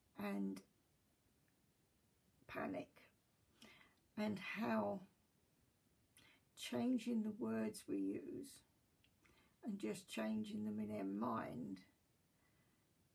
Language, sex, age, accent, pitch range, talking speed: English, female, 60-79, British, 180-250 Hz, 75 wpm